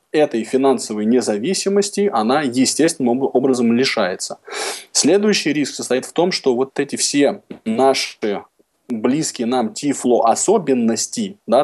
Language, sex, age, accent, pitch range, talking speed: Russian, male, 20-39, native, 120-160 Hz, 115 wpm